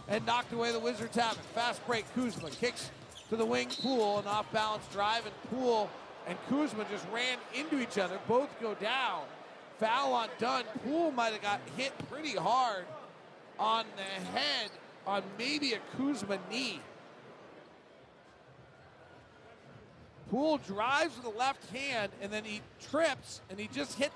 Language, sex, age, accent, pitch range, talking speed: English, male, 40-59, American, 195-245 Hz, 150 wpm